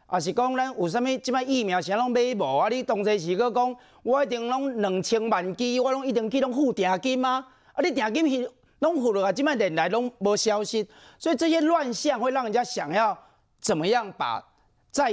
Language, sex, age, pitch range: Chinese, male, 40-59, 185-260 Hz